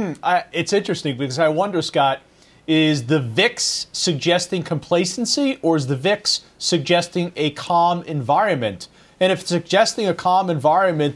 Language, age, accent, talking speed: English, 40-59, American, 140 wpm